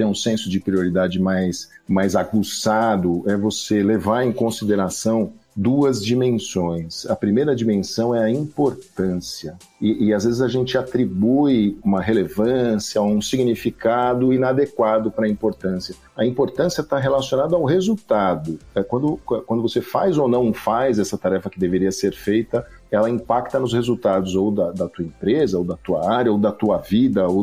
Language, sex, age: Portuguese, male, 50-69